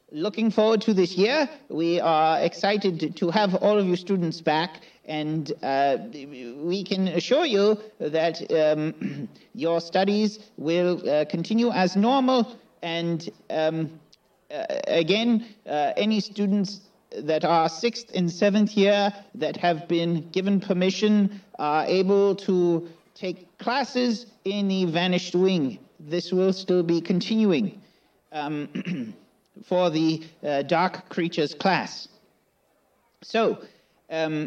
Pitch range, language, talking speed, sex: 165-215 Hz, English, 125 wpm, male